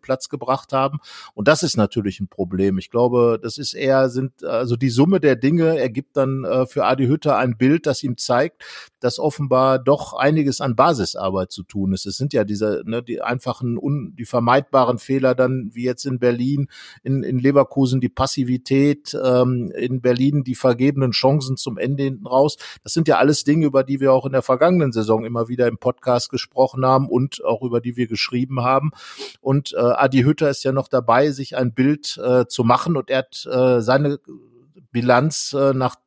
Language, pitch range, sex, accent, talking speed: German, 125-140 Hz, male, German, 195 wpm